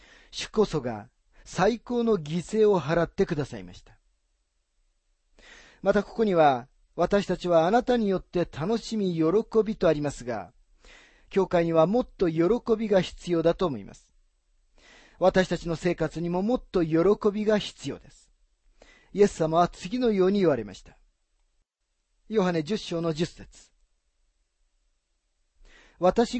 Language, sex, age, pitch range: Japanese, male, 40-59, 140-210 Hz